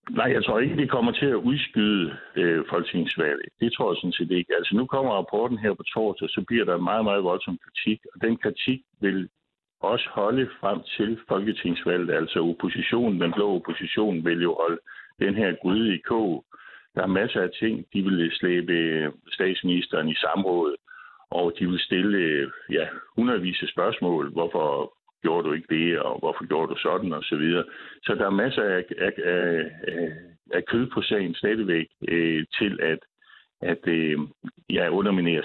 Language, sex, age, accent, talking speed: Danish, male, 60-79, native, 180 wpm